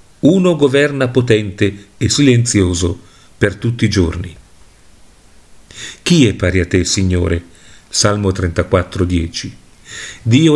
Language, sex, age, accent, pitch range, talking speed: Italian, male, 40-59, native, 100-140 Hz, 110 wpm